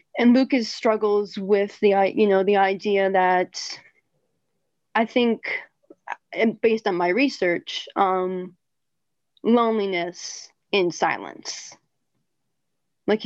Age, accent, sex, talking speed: 20-39, American, female, 95 wpm